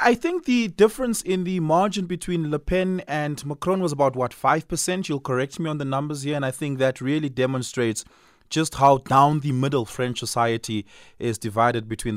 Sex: male